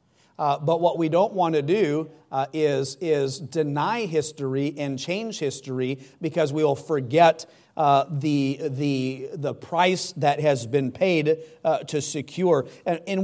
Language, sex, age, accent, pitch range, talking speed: English, male, 40-59, American, 140-160 Hz, 155 wpm